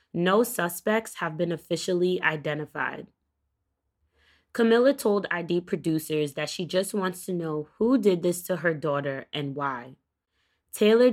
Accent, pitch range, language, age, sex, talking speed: American, 155-195 Hz, English, 20-39, female, 135 wpm